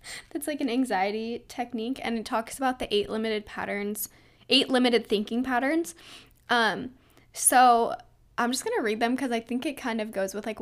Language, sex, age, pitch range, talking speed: English, female, 10-29, 215-250 Hz, 185 wpm